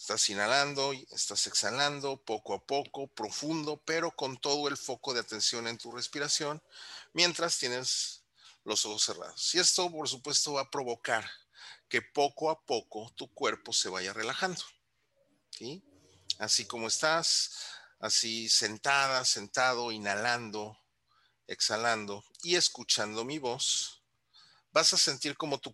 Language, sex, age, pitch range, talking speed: Spanish, male, 40-59, 110-145 Hz, 135 wpm